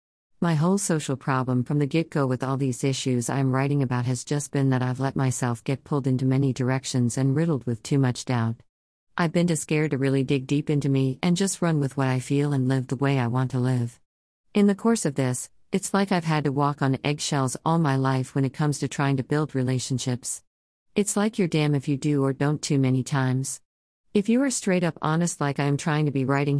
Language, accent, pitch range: English, American, 125-145 Hz